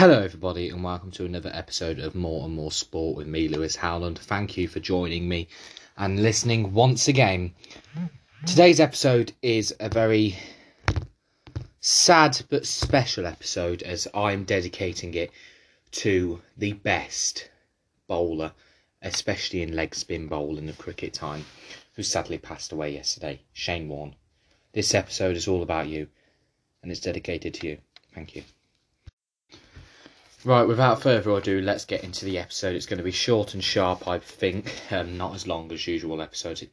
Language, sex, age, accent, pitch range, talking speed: English, male, 20-39, British, 85-105 Hz, 155 wpm